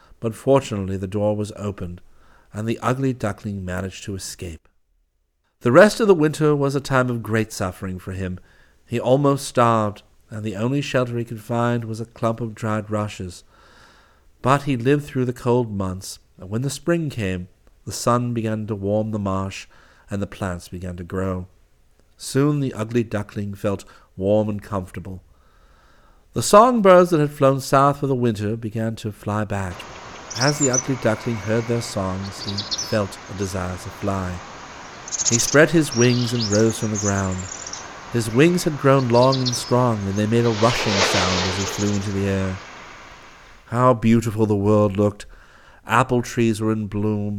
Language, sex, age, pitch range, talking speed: English, male, 50-69, 95-120 Hz, 175 wpm